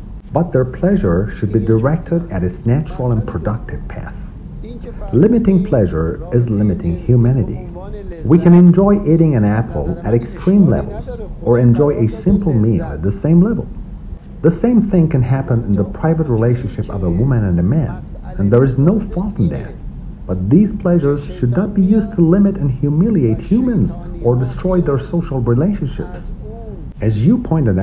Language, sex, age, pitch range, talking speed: English, male, 50-69, 105-175 Hz, 165 wpm